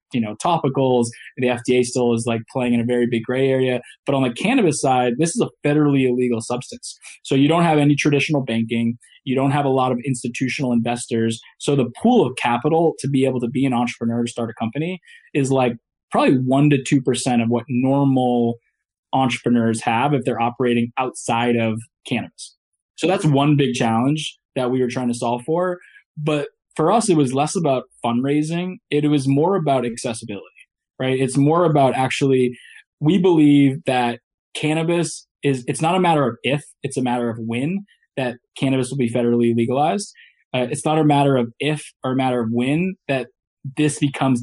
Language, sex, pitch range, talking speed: English, male, 120-150 Hz, 190 wpm